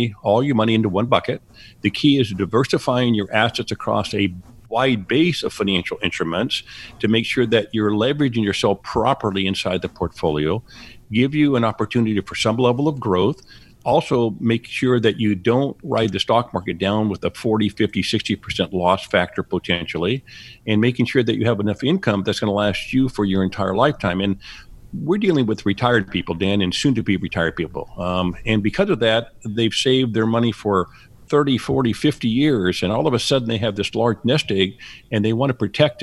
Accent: American